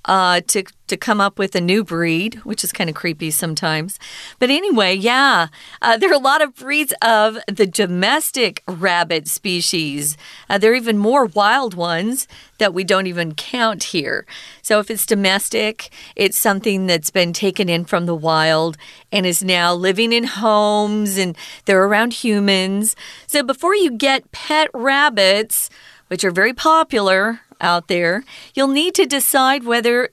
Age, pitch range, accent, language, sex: 40-59, 185-255 Hz, American, Chinese, female